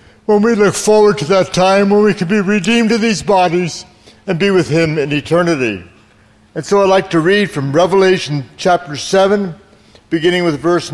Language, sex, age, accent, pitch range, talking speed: English, male, 60-79, American, 145-195 Hz, 185 wpm